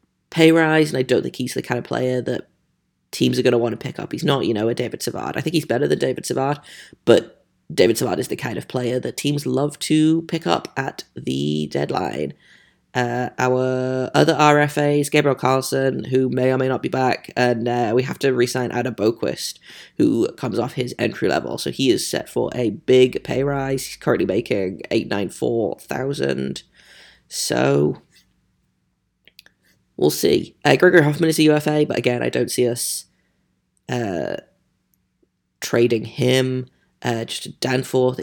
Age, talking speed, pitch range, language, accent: 20-39, 175 wpm, 120-135 Hz, English, British